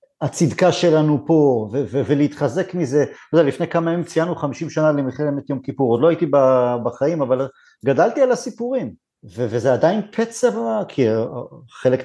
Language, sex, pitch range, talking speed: Hebrew, male, 130-170 Hz, 170 wpm